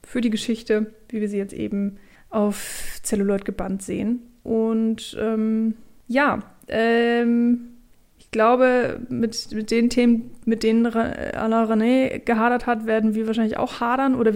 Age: 20-39